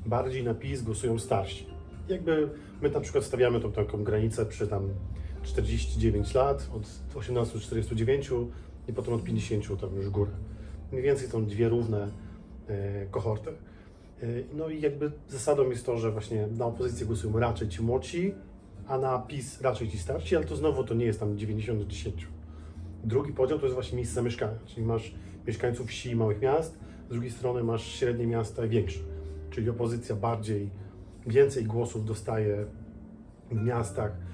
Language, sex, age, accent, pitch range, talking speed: English, male, 40-59, Polish, 105-125 Hz, 165 wpm